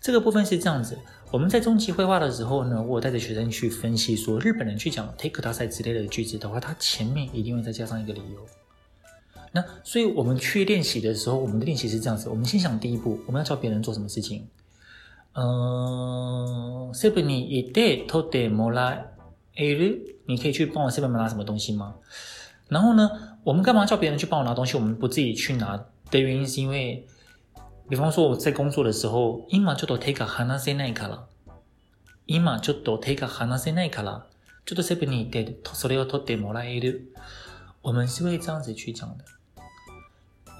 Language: Chinese